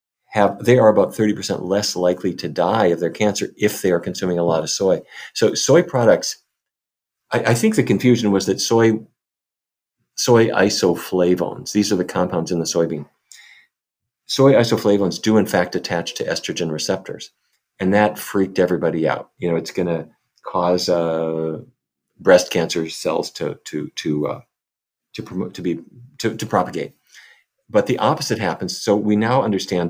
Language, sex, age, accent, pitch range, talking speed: English, male, 40-59, American, 90-115 Hz, 170 wpm